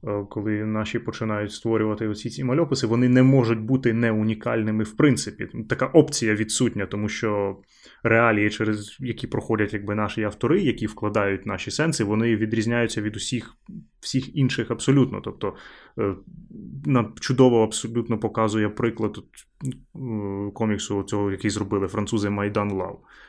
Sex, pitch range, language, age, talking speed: male, 105-125 Hz, Ukrainian, 20-39, 130 wpm